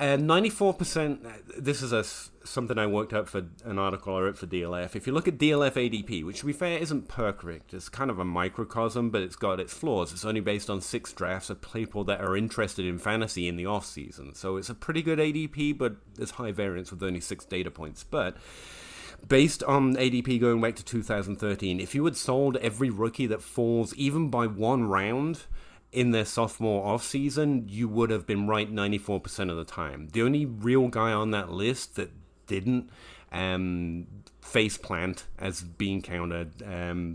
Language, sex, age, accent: English, male, 30-49, British